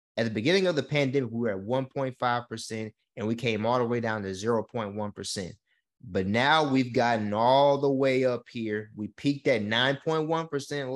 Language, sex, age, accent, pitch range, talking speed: English, male, 20-39, American, 110-130 Hz, 175 wpm